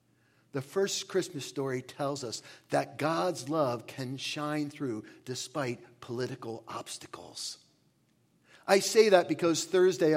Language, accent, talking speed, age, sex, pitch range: English, American, 120 wpm, 50-69, male, 145-200 Hz